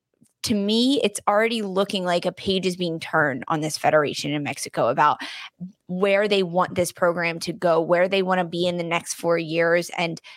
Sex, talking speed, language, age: female, 205 wpm, English, 20-39